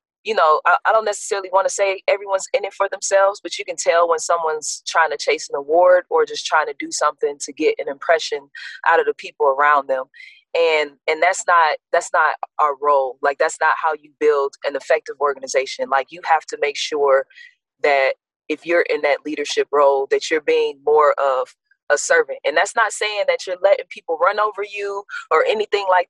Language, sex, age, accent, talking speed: English, female, 20-39, American, 210 wpm